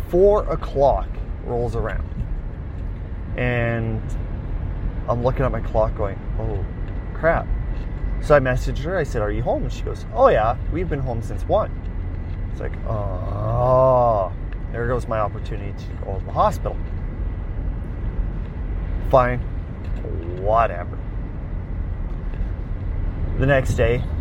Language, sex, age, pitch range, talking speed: English, male, 30-49, 85-115 Hz, 120 wpm